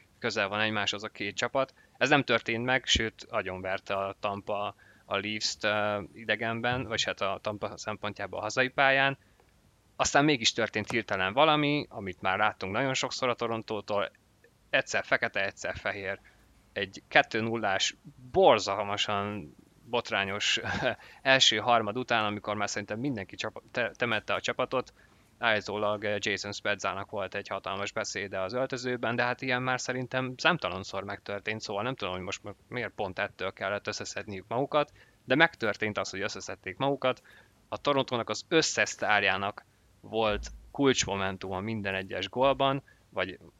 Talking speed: 135 wpm